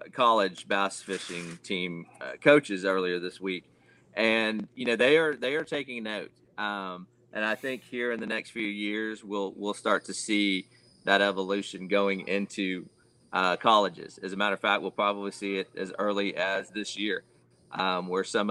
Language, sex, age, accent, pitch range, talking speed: English, male, 40-59, American, 95-110 Hz, 180 wpm